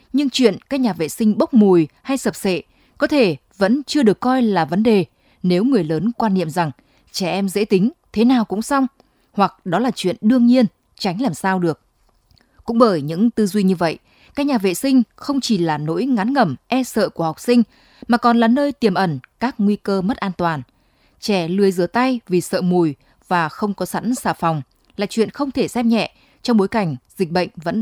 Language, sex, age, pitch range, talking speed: Vietnamese, female, 20-39, 175-235 Hz, 220 wpm